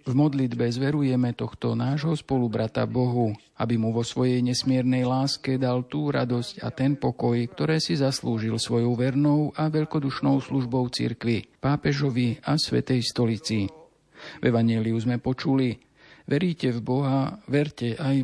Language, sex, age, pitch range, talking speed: Slovak, male, 50-69, 120-140 Hz, 135 wpm